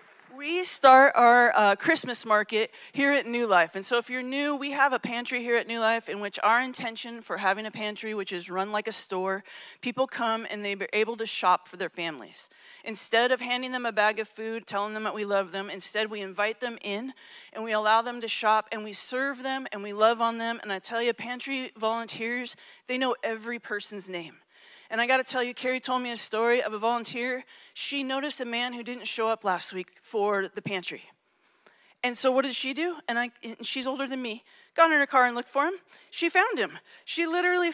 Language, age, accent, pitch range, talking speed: English, 30-49, American, 215-265 Hz, 230 wpm